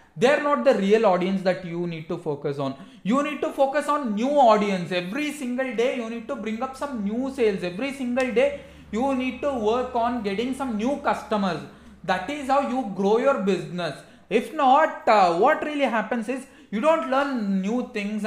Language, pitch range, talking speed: English, 200-270 Hz, 200 wpm